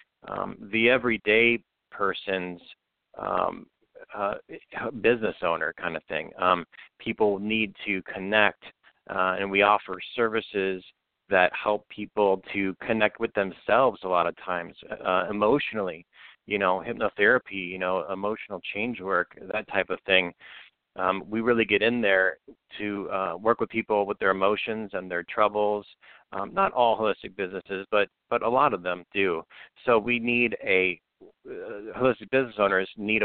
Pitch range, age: 95-115 Hz, 40-59